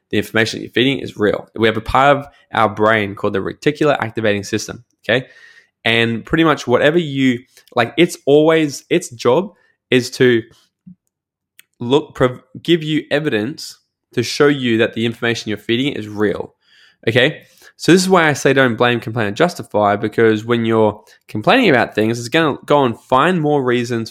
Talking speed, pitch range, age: 180 wpm, 110-135 Hz, 10-29